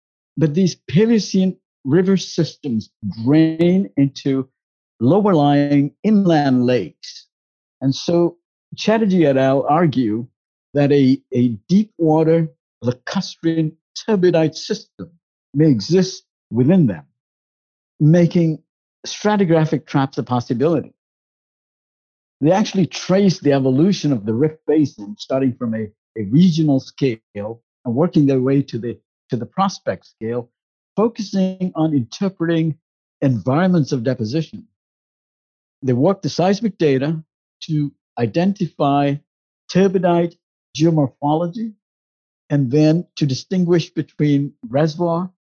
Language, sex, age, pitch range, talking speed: English, male, 50-69, 135-180 Hz, 105 wpm